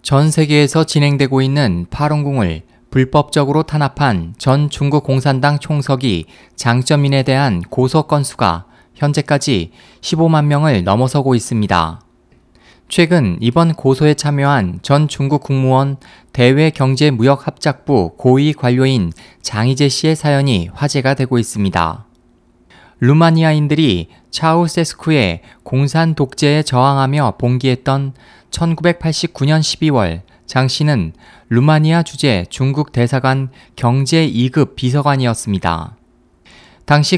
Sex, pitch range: male, 120-150 Hz